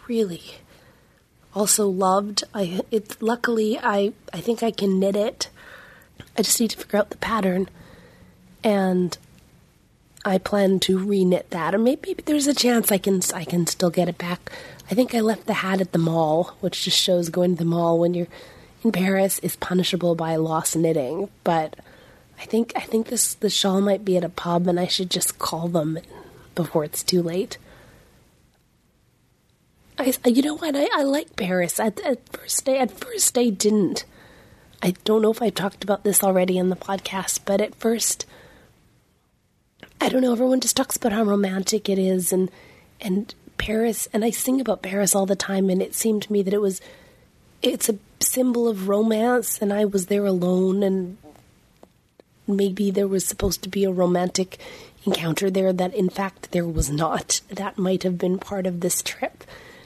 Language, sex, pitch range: English, female, 185-225 Hz